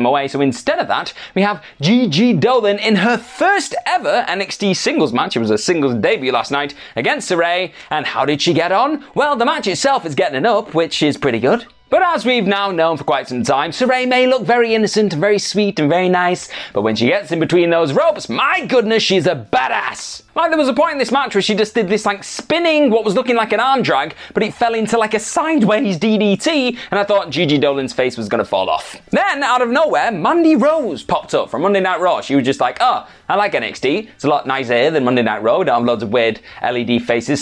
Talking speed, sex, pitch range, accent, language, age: 240 wpm, male, 150-240 Hz, British, English, 30-49